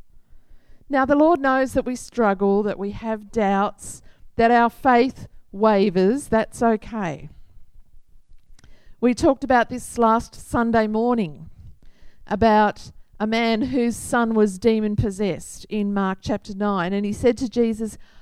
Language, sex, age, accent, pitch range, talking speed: English, female, 50-69, Australian, 170-240 Hz, 135 wpm